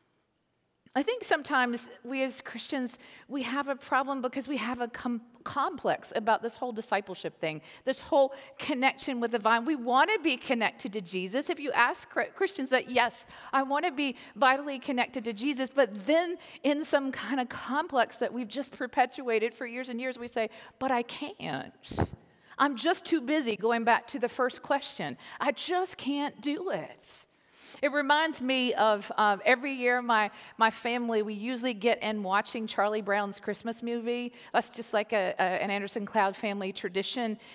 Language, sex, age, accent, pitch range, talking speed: English, female, 40-59, American, 225-275 Hz, 175 wpm